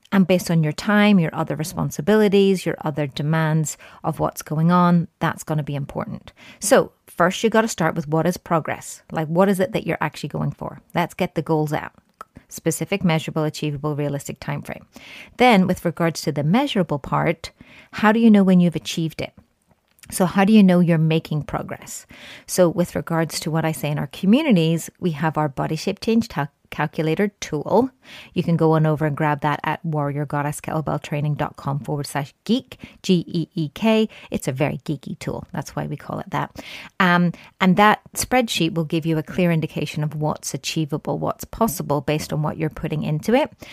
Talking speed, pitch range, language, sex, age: 190 wpm, 155-195 Hz, English, female, 30-49